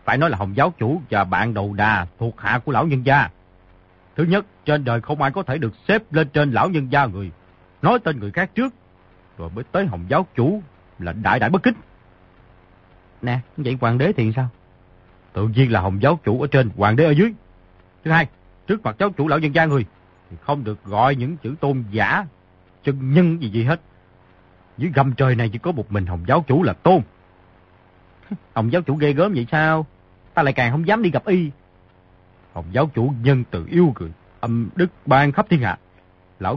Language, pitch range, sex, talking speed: Vietnamese, 90-145 Hz, male, 215 wpm